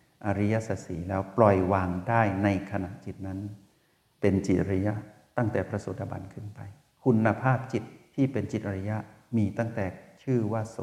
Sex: male